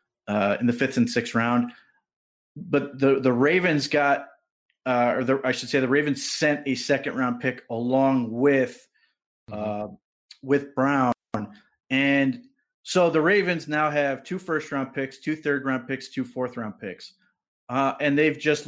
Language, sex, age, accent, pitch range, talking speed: English, male, 30-49, American, 120-145 Hz, 165 wpm